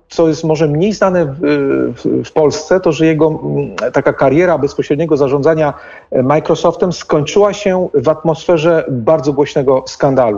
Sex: male